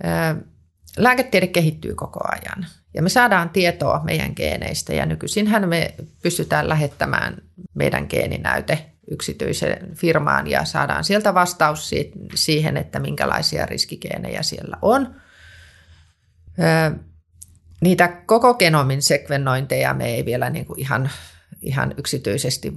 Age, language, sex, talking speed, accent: 30-49, Finnish, female, 100 wpm, native